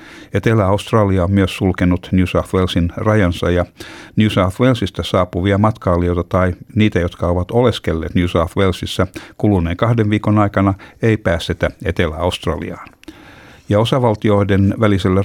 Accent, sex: native, male